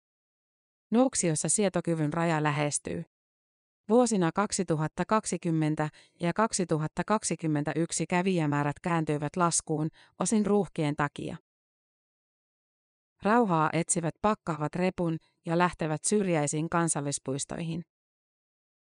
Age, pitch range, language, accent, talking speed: 30-49, 155-185 Hz, Finnish, native, 70 wpm